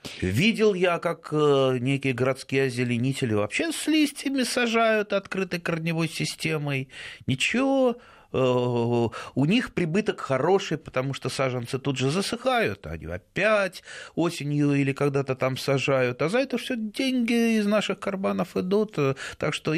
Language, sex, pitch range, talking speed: Russian, male, 120-170 Hz, 125 wpm